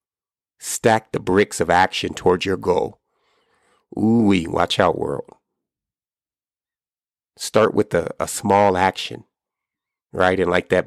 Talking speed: 120 wpm